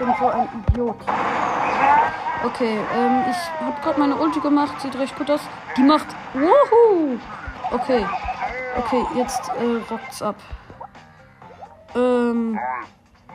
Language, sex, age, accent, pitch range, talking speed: German, female, 30-49, German, 245-320 Hz, 115 wpm